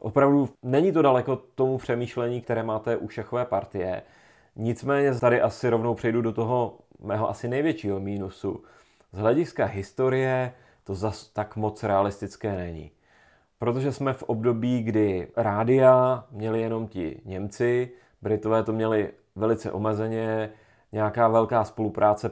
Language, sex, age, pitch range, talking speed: Czech, male, 30-49, 105-120 Hz, 130 wpm